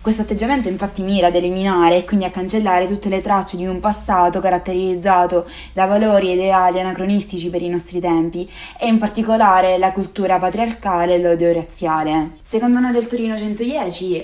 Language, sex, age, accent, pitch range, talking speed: Italian, female, 20-39, native, 175-210 Hz, 170 wpm